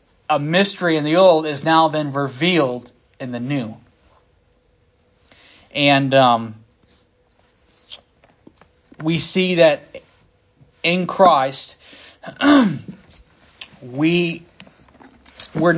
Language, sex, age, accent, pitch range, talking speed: English, male, 30-49, American, 125-165 Hz, 80 wpm